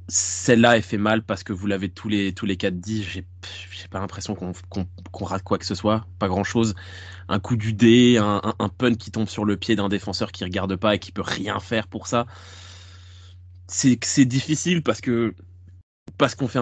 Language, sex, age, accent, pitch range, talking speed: French, male, 20-39, French, 95-110 Hz, 225 wpm